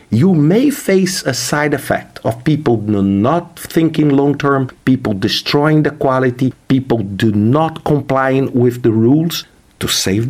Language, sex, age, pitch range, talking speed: English, male, 50-69, 125-180 Hz, 145 wpm